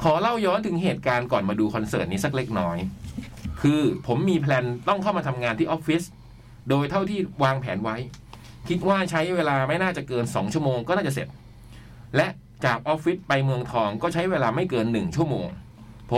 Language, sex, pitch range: Thai, male, 120-165 Hz